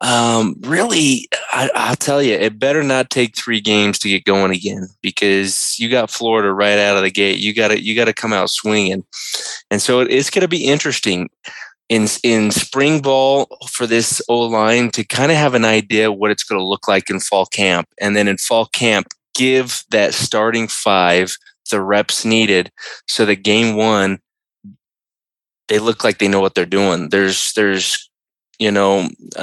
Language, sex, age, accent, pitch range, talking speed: English, male, 20-39, American, 100-120 Hz, 190 wpm